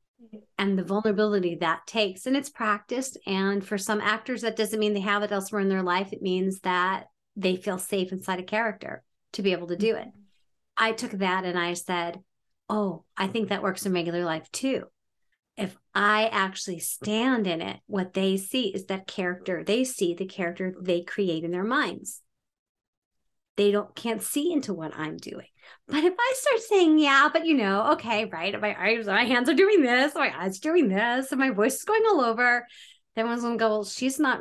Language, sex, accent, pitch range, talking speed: English, female, American, 180-230 Hz, 205 wpm